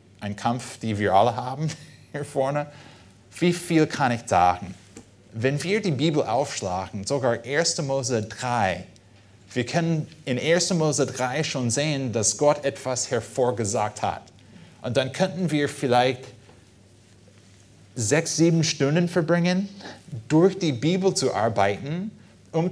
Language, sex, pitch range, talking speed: German, male, 110-150 Hz, 130 wpm